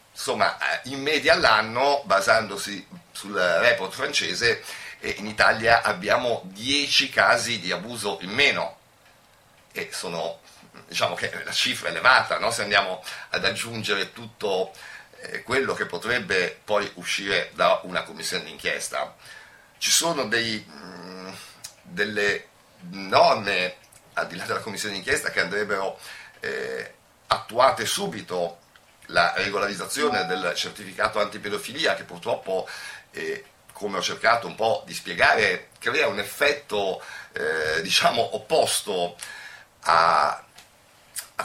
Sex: male